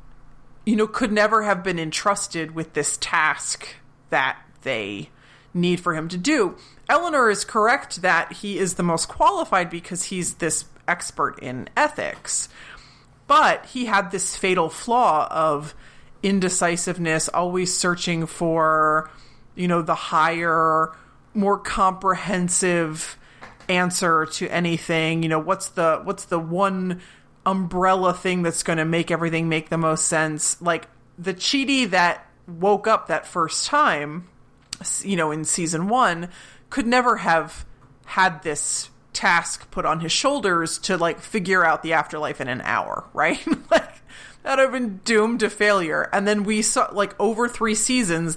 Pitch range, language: 160-200 Hz, English